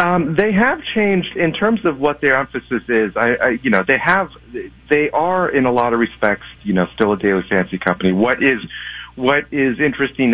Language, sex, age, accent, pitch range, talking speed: English, male, 40-59, American, 100-130 Hz, 210 wpm